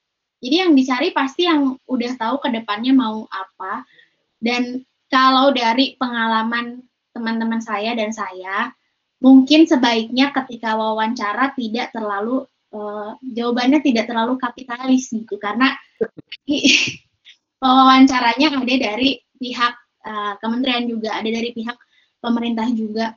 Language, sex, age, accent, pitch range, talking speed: Indonesian, female, 20-39, native, 225-270 Hz, 110 wpm